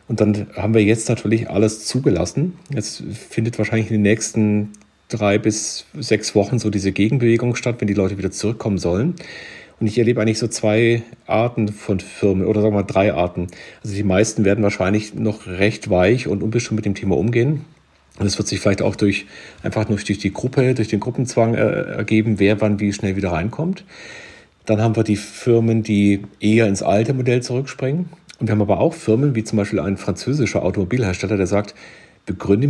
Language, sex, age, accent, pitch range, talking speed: German, male, 40-59, German, 100-115 Hz, 195 wpm